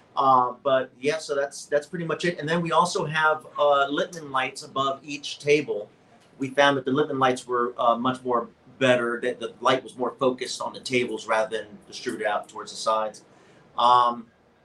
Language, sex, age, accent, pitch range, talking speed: English, male, 40-59, American, 125-150 Hz, 195 wpm